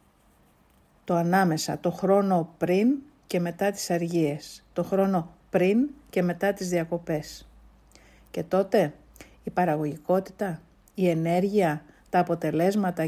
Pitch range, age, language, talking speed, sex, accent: 165-210 Hz, 50-69, Greek, 105 wpm, female, native